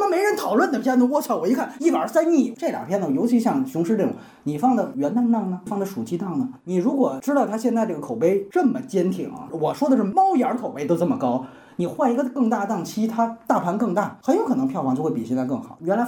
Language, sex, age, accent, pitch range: Chinese, male, 30-49, native, 185-260 Hz